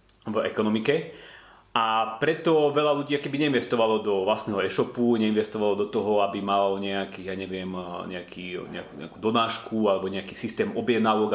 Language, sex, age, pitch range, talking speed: Slovak, male, 30-49, 100-125 Hz, 125 wpm